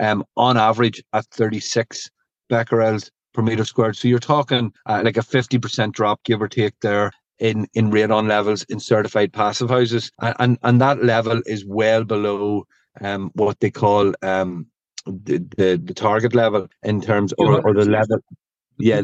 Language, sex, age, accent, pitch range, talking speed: English, male, 40-59, Irish, 105-120 Hz, 175 wpm